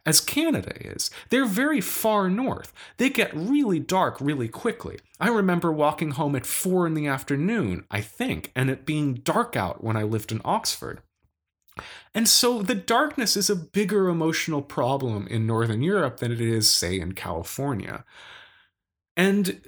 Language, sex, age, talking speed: English, male, 30-49, 160 wpm